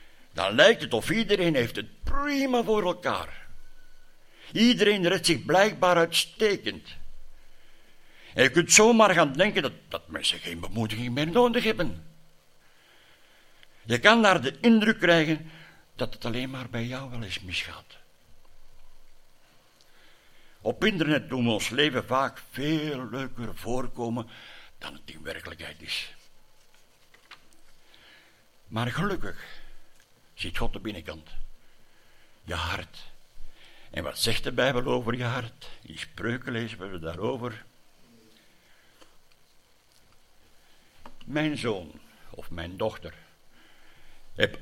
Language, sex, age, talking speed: Dutch, male, 60-79, 115 wpm